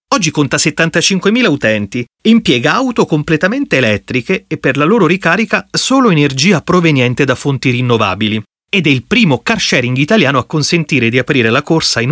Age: 30-49